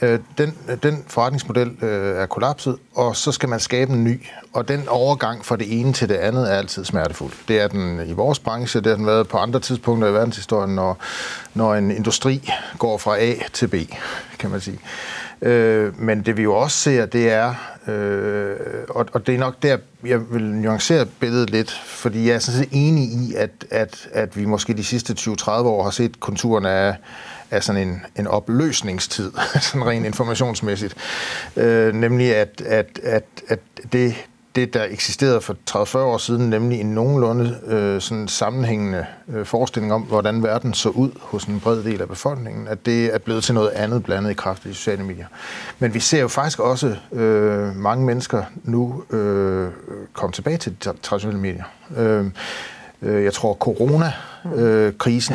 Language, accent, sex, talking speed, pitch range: Danish, native, male, 180 wpm, 105-125 Hz